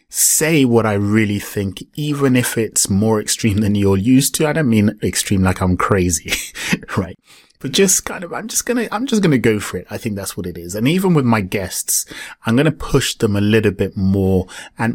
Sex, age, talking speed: male, 30-49, 235 wpm